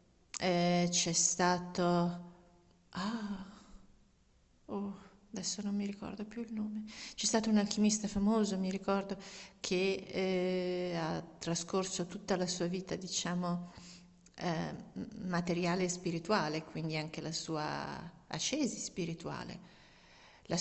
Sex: female